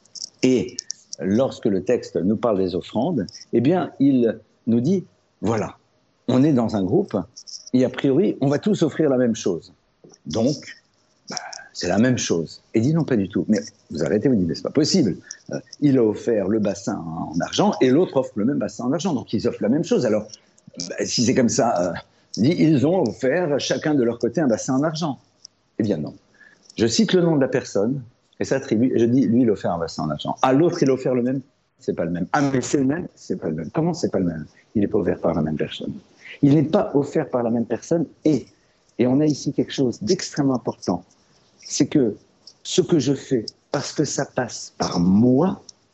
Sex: male